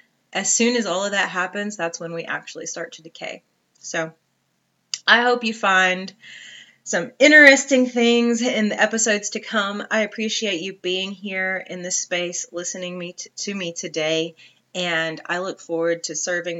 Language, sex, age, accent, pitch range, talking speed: English, female, 30-49, American, 165-210 Hz, 165 wpm